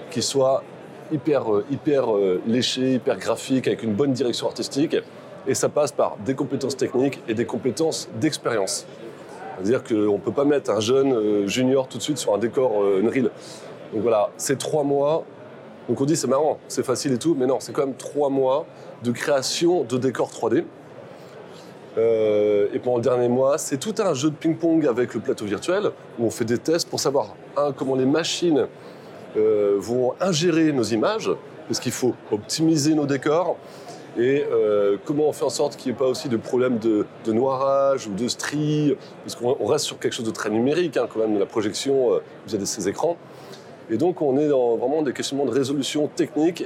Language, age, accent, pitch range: French, 20-39, French, 120-155 Hz